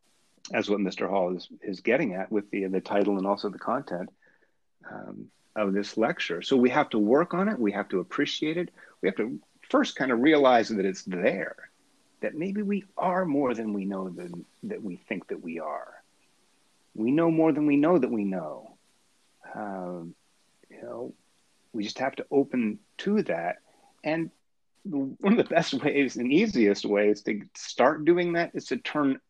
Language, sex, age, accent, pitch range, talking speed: English, male, 30-49, American, 95-150 Hz, 190 wpm